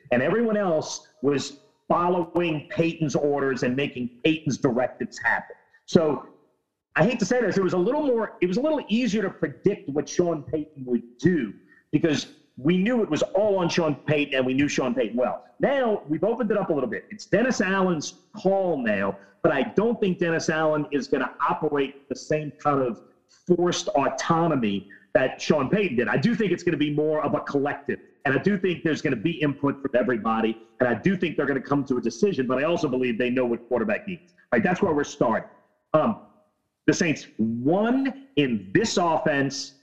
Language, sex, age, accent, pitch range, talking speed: English, male, 40-59, American, 140-185 Hz, 205 wpm